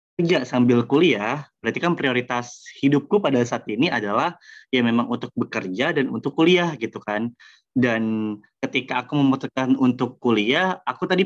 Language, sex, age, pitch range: Indonesian, male, 20-39, 120-145 Hz